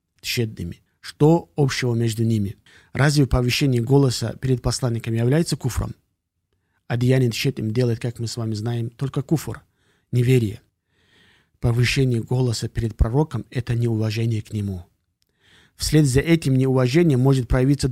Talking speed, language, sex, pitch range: 125 wpm, Russian, male, 110-135 Hz